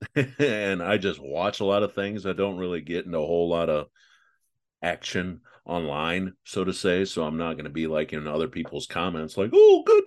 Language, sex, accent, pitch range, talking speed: English, male, American, 80-110 Hz, 215 wpm